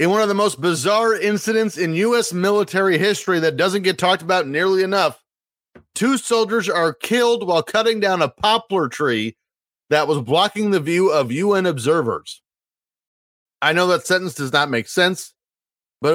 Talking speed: 165 wpm